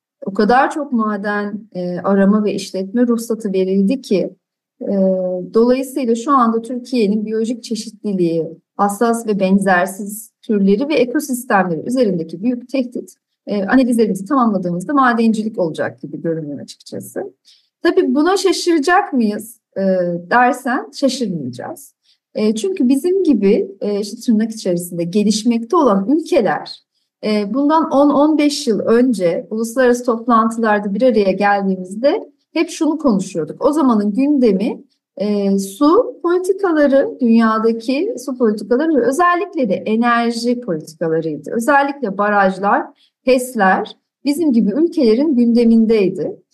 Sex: female